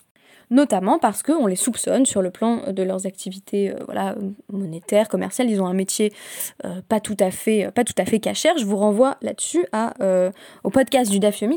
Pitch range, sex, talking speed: 185-255 Hz, female, 200 wpm